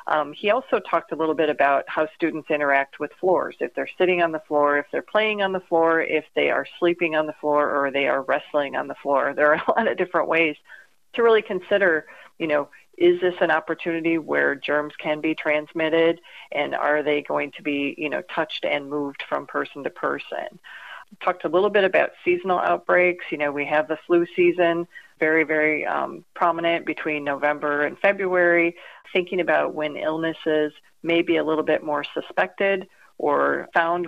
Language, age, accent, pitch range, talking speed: English, 40-59, American, 150-175 Hz, 195 wpm